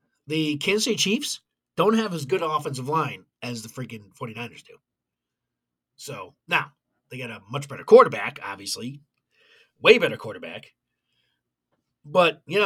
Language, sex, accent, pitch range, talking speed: English, male, American, 120-170 Hz, 140 wpm